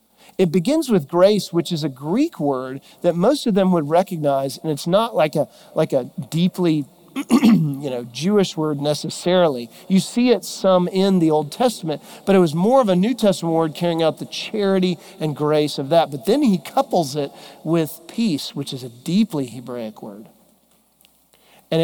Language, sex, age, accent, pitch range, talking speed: English, male, 40-59, American, 160-220 Hz, 185 wpm